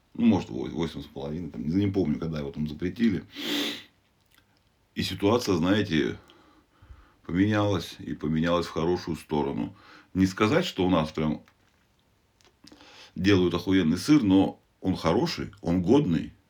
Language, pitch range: Russian, 80-100 Hz